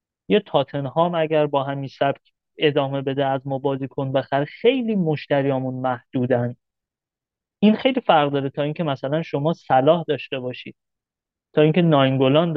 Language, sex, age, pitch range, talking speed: Persian, male, 30-49, 135-165 Hz, 145 wpm